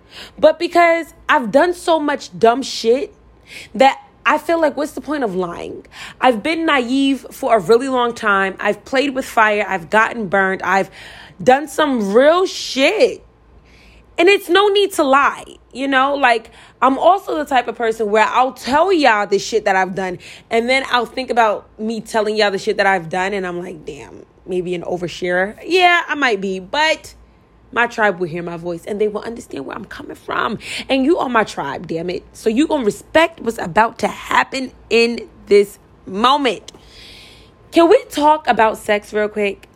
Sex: female